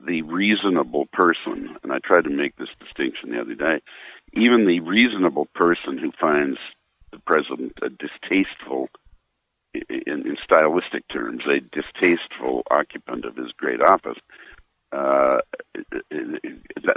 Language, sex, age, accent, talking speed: English, male, 60-79, American, 120 wpm